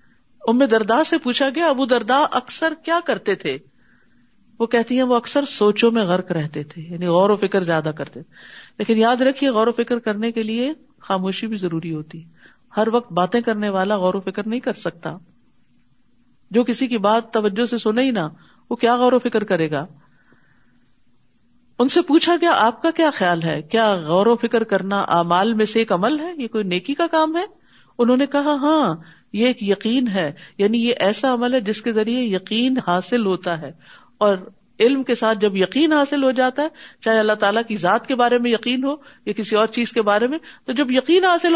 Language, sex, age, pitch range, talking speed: Urdu, female, 50-69, 185-250 Hz, 205 wpm